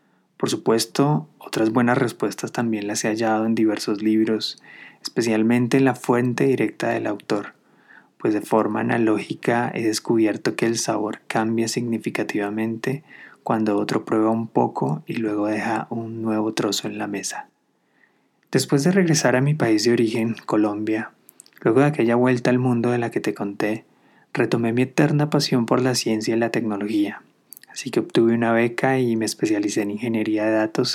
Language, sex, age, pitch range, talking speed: Spanish, male, 20-39, 110-125 Hz, 165 wpm